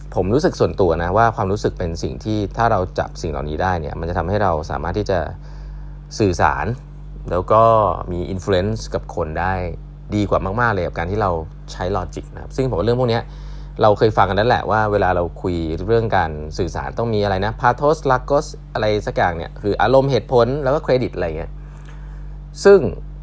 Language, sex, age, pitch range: English, male, 20-39, 90-145 Hz